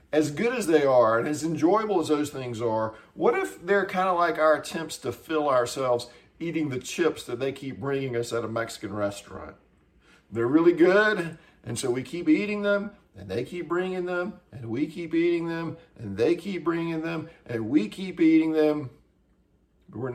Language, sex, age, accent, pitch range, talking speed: English, male, 40-59, American, 120-165 Hz, 195 wpm